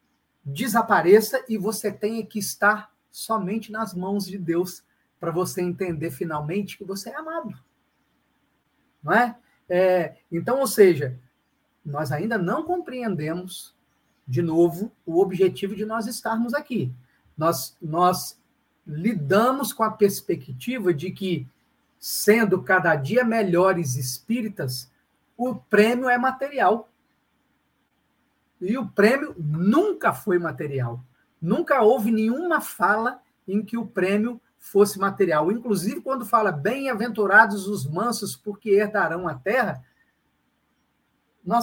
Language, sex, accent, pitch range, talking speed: Portuguese, male, Brazilian, 185-240 Hz, 115 wpm